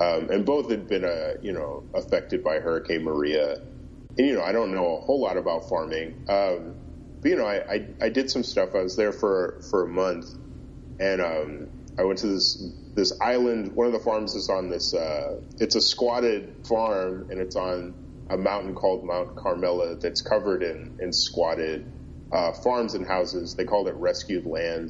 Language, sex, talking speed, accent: English, male, 200 wpm, American